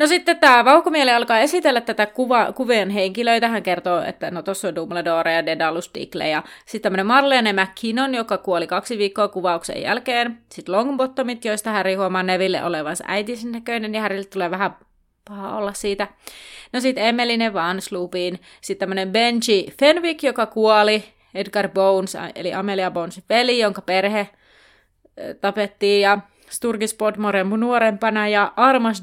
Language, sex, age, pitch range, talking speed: Finnish, female, 30-49, 185-235 Hz, 140 wpm